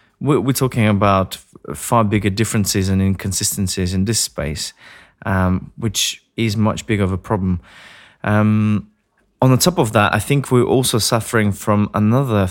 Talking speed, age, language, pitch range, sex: 155 wpm, 20-39, English, 95-115 Hz, male